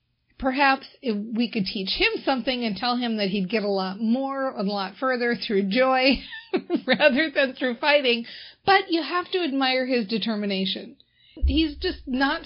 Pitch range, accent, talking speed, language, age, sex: 200-260 Hz, American, 170 wpm, English, 50-69, female